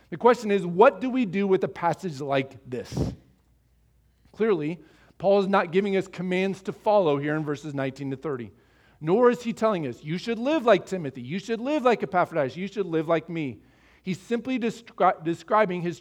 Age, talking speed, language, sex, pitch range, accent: 40-59, 190 wpm, English, male, 150-210 Hz, American